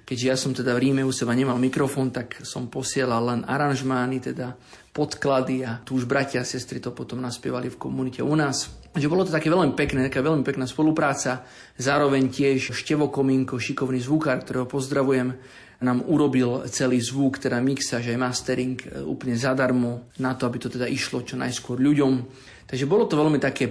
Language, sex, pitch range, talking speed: Slovak, male, 125-135 Hz, 180 wpm